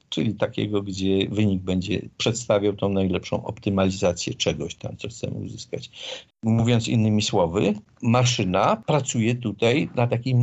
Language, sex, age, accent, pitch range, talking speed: Polish, male, 50-69, native, 100-125 Hz, 125 wpm